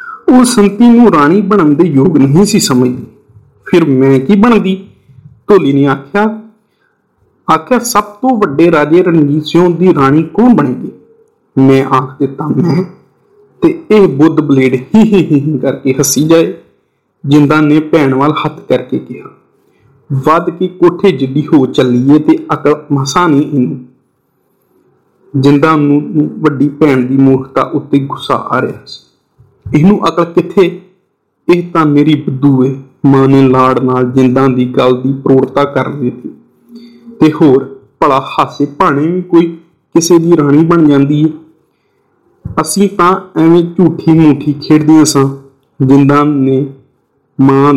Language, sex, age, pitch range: Punjabi, male, 50-69, 135-175 Hz